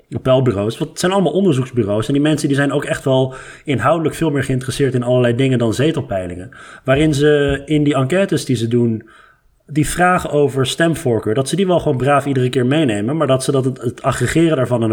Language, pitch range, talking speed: Dutch, 115-145 Hz, 210 wpm